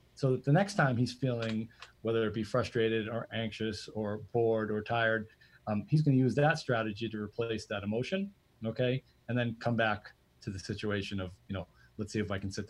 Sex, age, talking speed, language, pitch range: male, 30-49, 215 wpm, English, 100-115 Hz